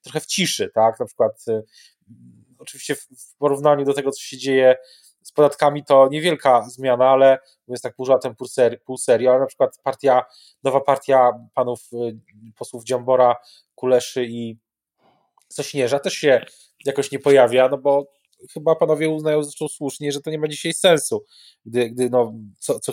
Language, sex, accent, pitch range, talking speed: Polish, male, native, 125-160 Hz, 170 wpm